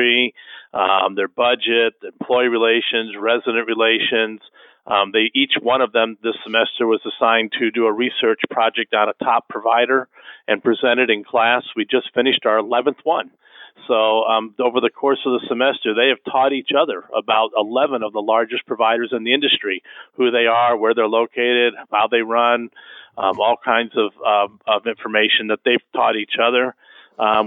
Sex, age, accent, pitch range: male, 40-59, American, 115-130 Hz